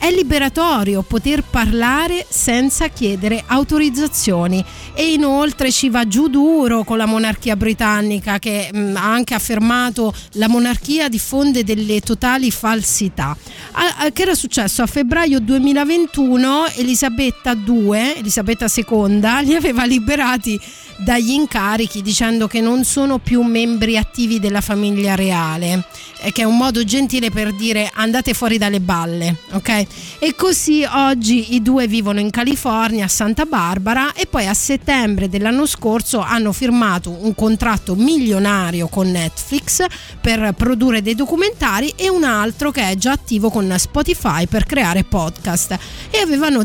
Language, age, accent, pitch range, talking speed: Italian, 30-49, native, 210-275 Hz, 140 wpm